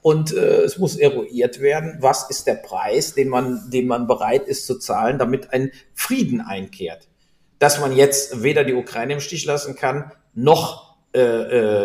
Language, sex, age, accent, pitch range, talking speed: German, male, 50-69, German, 120-195 Hz, 175 wpm